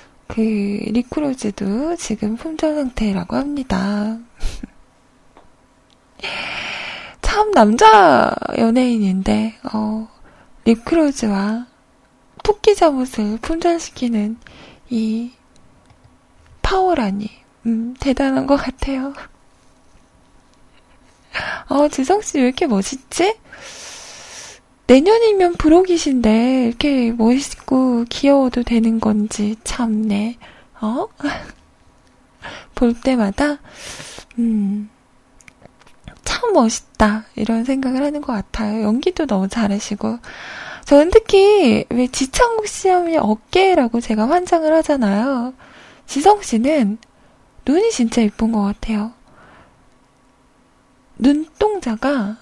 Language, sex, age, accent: Korean, female, 20-39, native